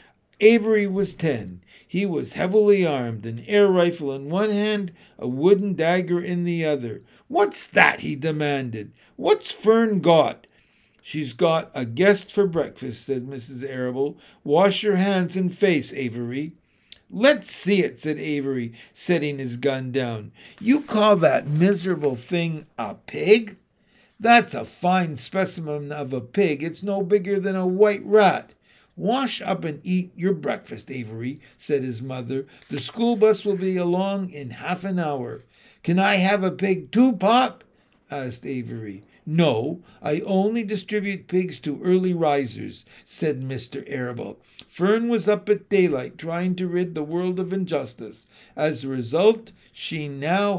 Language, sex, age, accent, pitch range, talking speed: English, male, 60-79, American, 135-200 Hz, 150 wpm